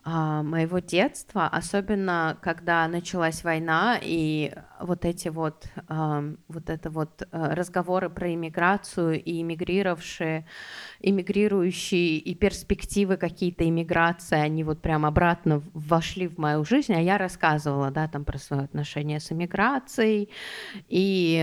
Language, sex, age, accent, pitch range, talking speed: Russian, female, 30-49, native, 160-200 Hz, 120 wpm